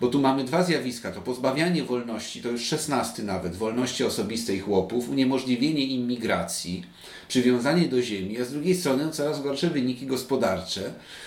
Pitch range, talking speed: 120-150 Hz, 150 wpm